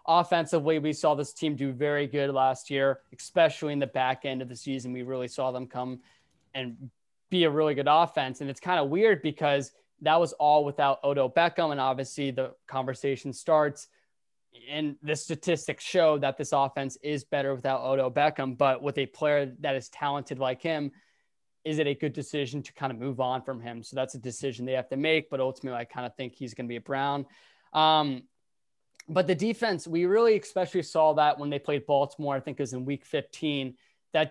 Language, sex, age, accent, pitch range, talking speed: English, male, 20-39, American, 135-155 Hz, 210 wpm